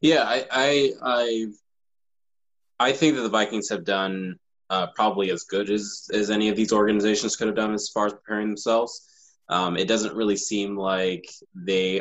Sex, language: male, English